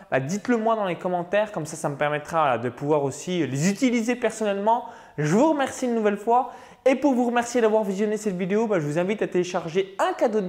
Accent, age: French, 20-39